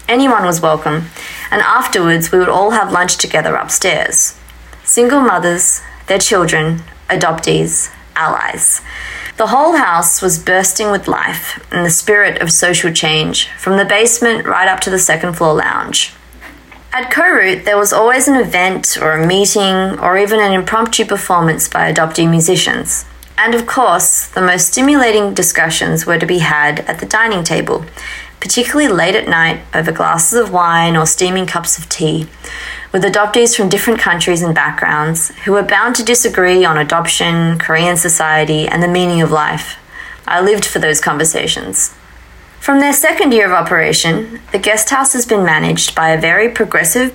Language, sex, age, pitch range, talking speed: English, female, 30-49, 160-215 Hz, 165 wpm